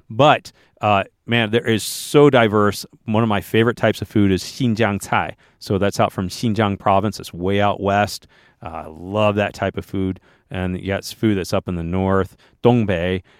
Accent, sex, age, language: American, male, 40-59, English